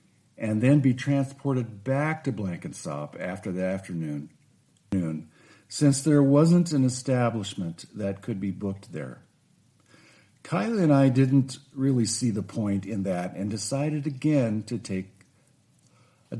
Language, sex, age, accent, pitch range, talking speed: English, male, 50-69, American, 100-140 Hz, 130 wpm